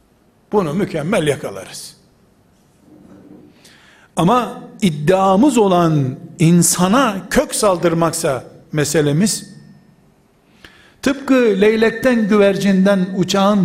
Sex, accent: male, native